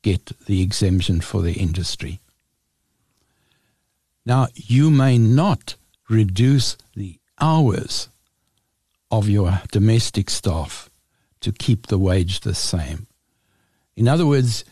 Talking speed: 105 wpm